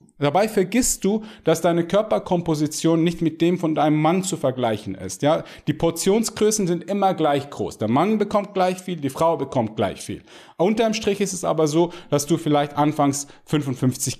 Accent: German